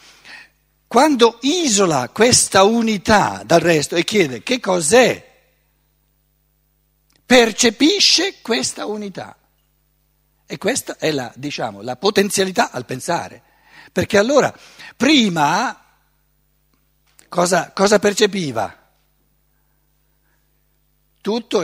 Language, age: Italian, 60-79